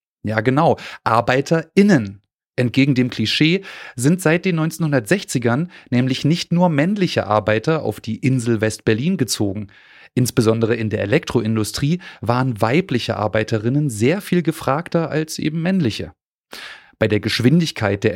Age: 30-49